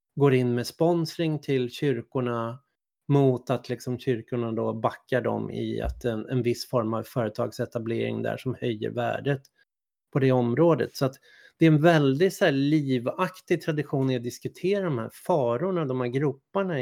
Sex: male